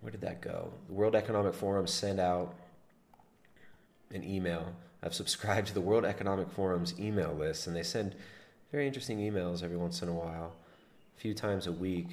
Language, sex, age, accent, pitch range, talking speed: English, male, 30-49, American, 90-105 Hz, 185 wpm